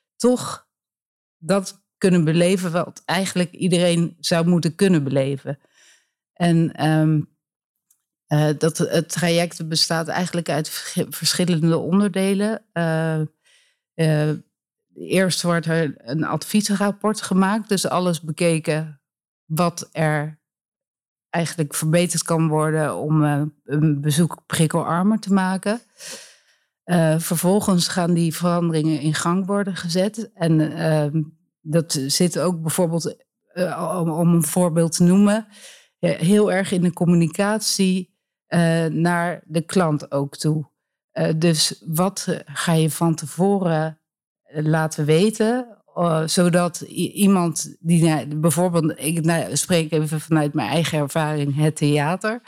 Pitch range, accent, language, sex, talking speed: 155-185 Hz, Dutch, Dutch, female, 115 wpm